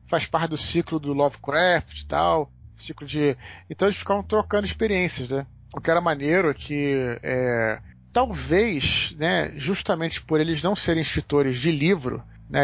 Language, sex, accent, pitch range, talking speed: Portuguese, male, Brazilian, 130-190 Hz, 150 wpm